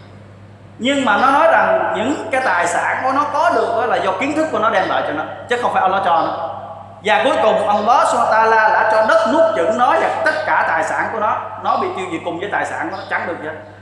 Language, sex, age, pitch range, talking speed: Vietnamese, male, 20-39, 200-255 Hz, 265 wpm